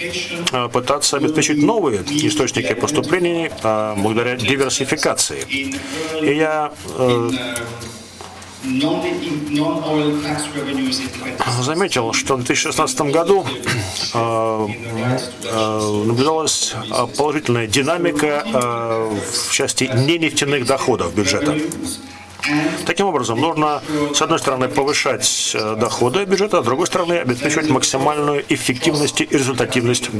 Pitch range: 120-165 Hz